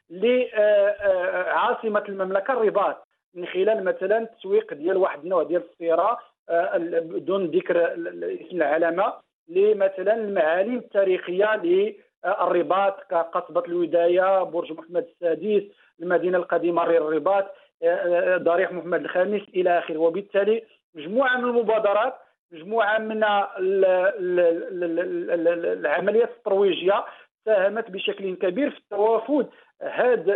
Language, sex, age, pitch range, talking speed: English, male, 50-69, 185-225 Hz, 90 wpm